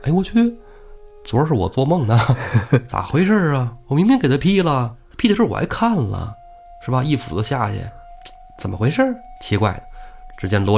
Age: 20-39